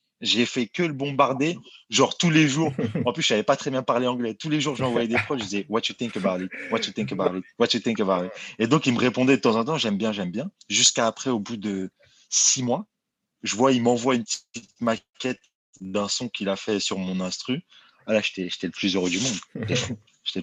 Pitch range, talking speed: 105-130 Hz, 255 wpm